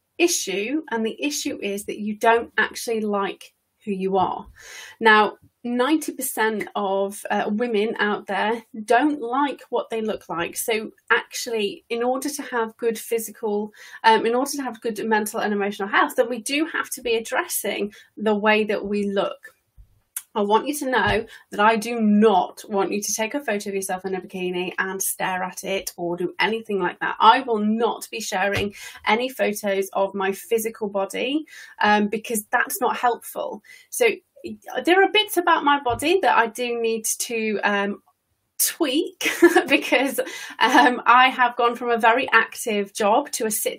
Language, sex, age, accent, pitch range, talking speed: English, female, 30-49, British, 205-260 Hz, 175 wpm